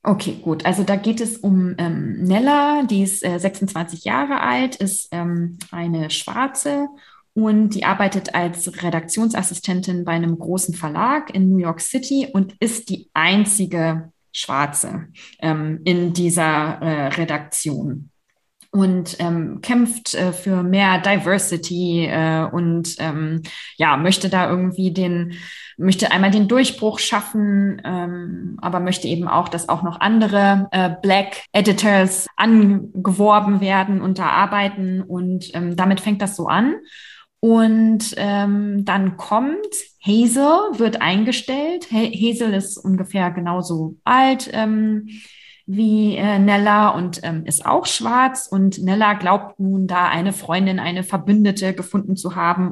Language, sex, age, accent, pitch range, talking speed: German, female, 20-39, German, 175-210 Hz, 140 wpm